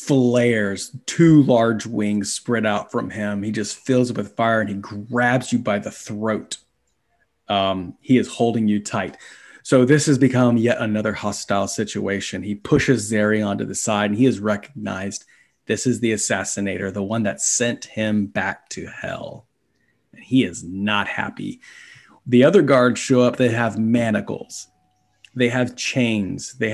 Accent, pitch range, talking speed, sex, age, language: American, 100-125 Hz, 165 wpm, male, 30-49, English